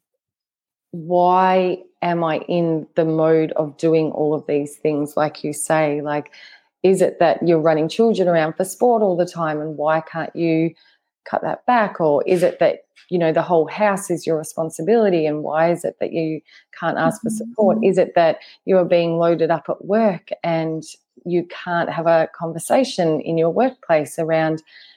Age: 20-39